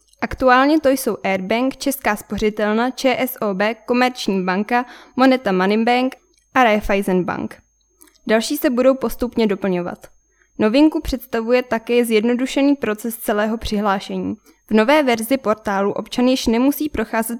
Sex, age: female, 10-29